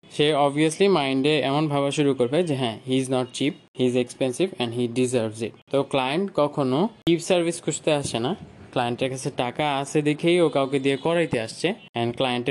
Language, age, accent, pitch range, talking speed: Bengali, 20-39, native, 130-160 Hz, 110 wpm